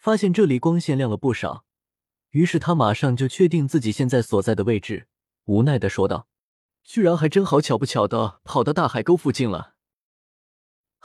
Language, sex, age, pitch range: Chinese, male, 20-39, 115-170 Hz